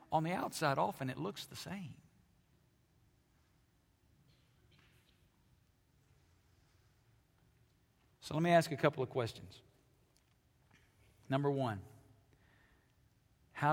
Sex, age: male, 50-69